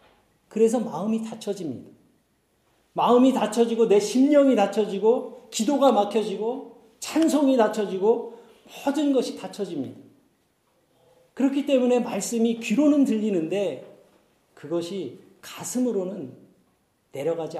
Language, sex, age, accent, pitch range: Korean, male, 40-59, native, 155-230 Hz